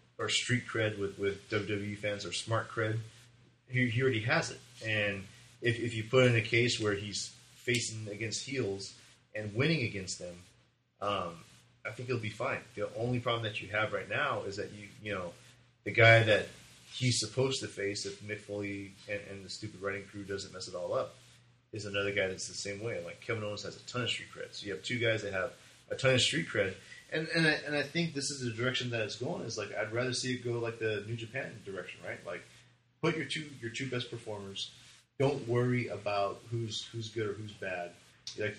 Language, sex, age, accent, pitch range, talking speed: English, male, 30-49, American, 100-125 Hz, 225 wpm